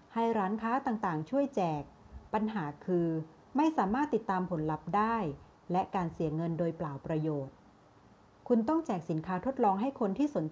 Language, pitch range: Thai, 170-245 Hz